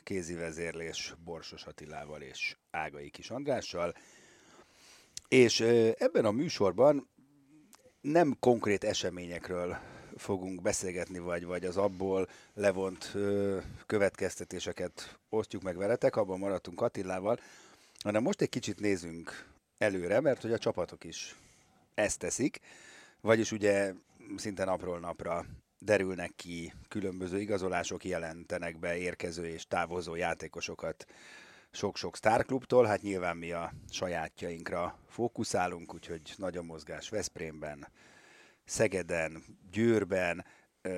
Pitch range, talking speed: 85-105 Hz, 105 wpm